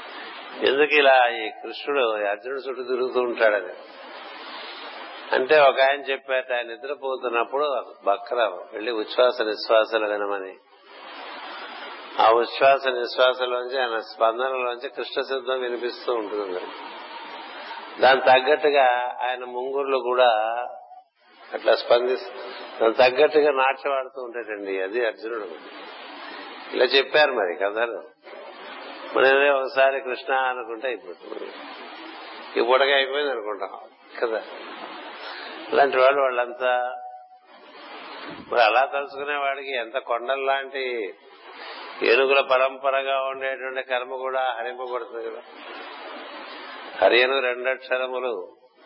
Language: Telugu